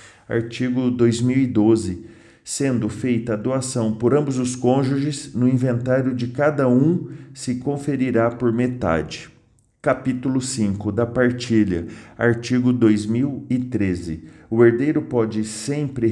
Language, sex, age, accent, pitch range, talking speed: Portuguese, male, 40-59, Brazilian, 115-135 Hz, 110 wpm